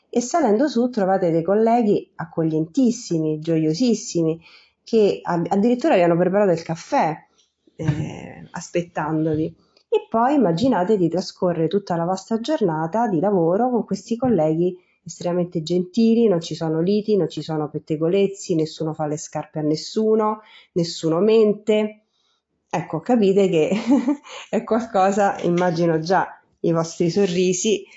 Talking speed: 125 wpm